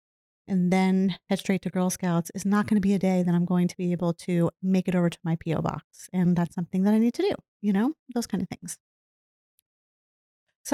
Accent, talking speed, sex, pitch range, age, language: American, 240 wpm, female, 175-230 Hz, 30-49, English